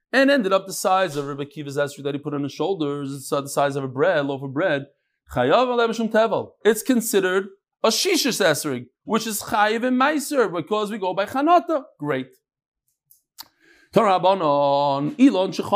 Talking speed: 155 wpm